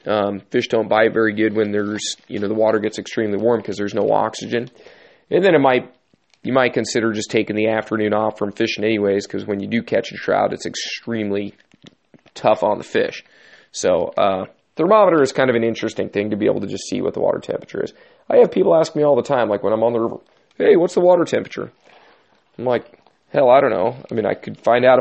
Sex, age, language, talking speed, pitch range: male, 30-49, English, 235 wpm, 110-130 Hz